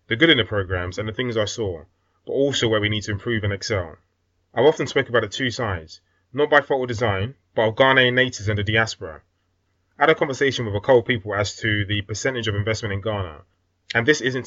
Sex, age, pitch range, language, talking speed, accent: male, 20-39, 95-125 Hz, English, 235 wpm, British